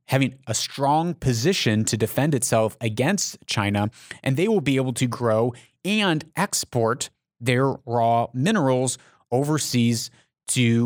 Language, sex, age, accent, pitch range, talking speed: English, male, 30-49, American, 115-140 Hz, 125 wpm